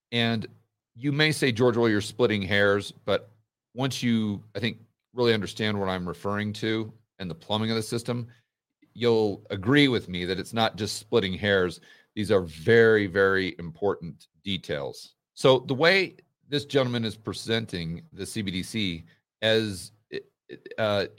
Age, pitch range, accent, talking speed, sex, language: 40-59, 95-115 Hz, American, 150 wpm, male, English